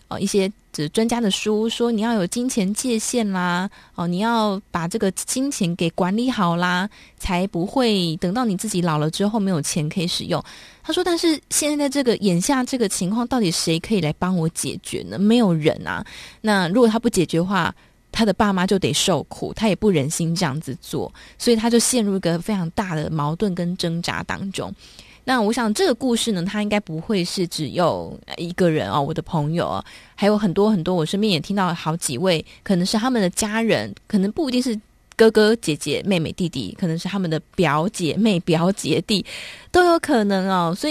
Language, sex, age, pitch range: Chinese, female, 20-39, 170-225 Hz